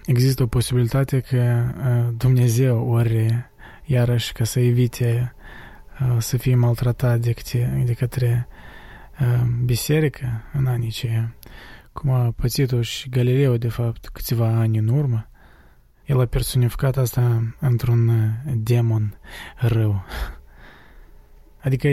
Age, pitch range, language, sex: 20-39, 115-130 Hz, Romanian, male